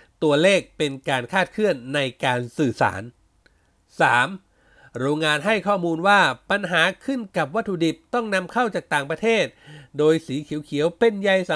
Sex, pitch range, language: male, 140-195 Hz, Thai